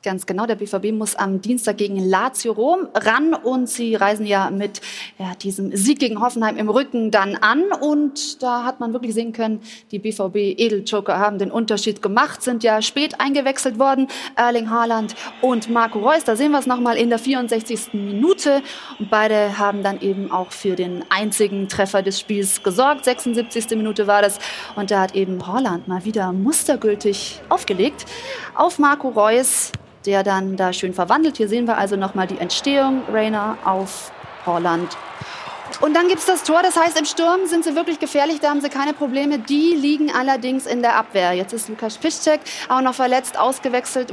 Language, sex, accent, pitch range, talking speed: German, female, German, 210-275 Hz, 180 wpm